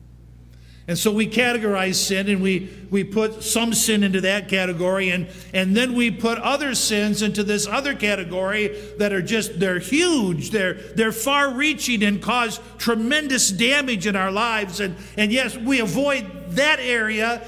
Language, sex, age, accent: English, male, 50-69, American